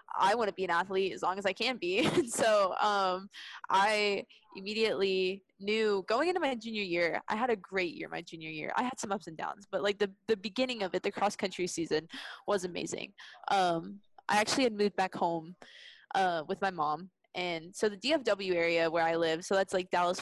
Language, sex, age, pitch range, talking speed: English, female, 20-39, 185-215 Hz, 215 wpm